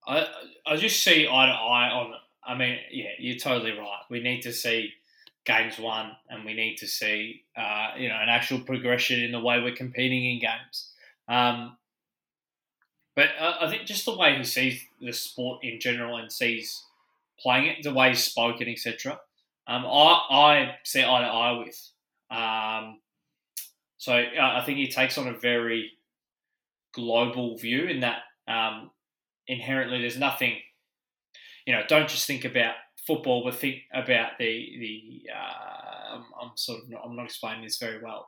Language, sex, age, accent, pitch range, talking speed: English, male, 20-39, Australian, 115-130 Hz, 170 wpm